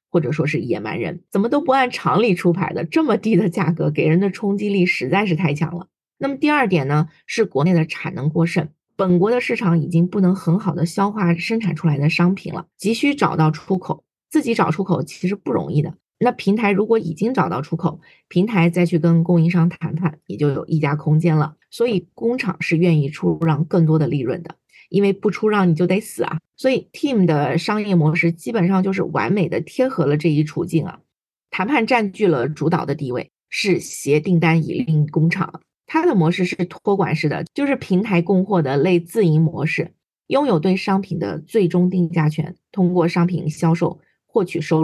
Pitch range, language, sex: 160-200 Hz, Chinese, female